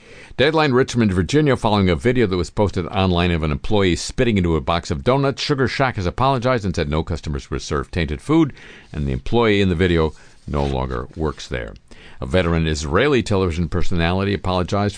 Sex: male